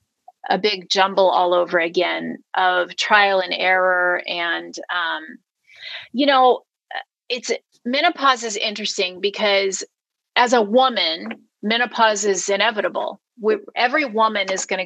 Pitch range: 180-225 Hz